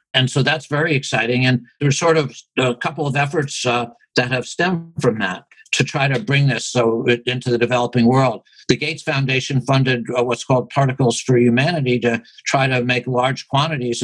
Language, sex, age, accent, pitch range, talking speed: English, male, 60-79, American, 120-140 Hz, 190 wpm